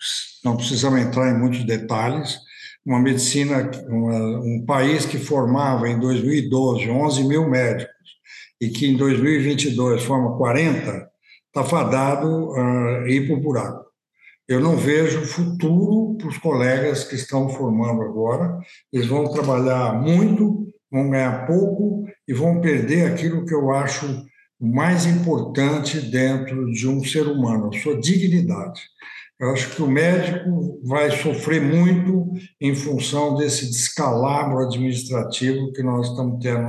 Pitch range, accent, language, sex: 125-160 Hz, Brazilian, Portuguese, male